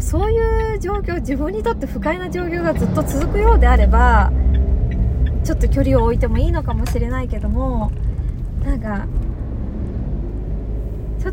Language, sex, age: Japanese, female, 20-39